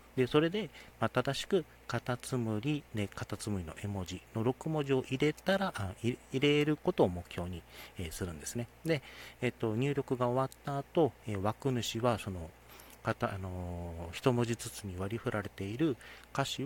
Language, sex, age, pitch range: Japanese, male, 40-59, 95-130 Hz